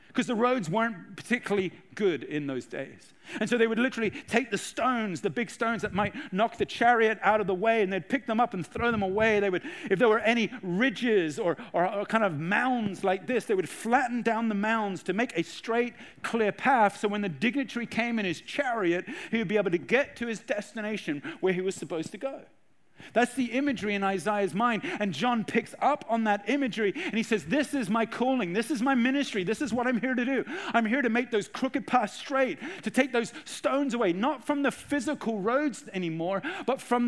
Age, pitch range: 40-59, 205-260 Hz